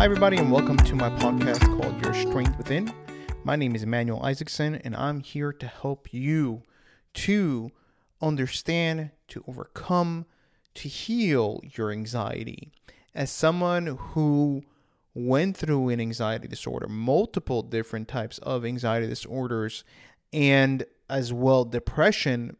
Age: 30-49